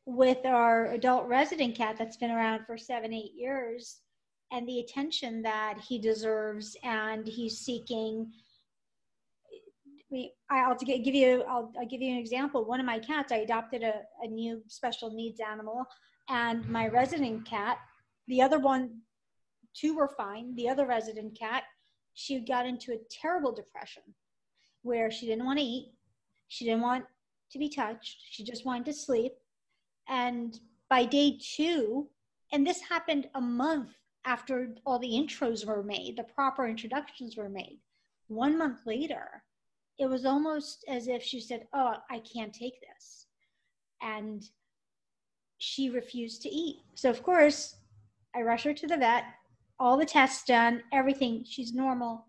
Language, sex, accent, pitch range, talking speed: English, female, American, 230-270 Hz, 150 wpm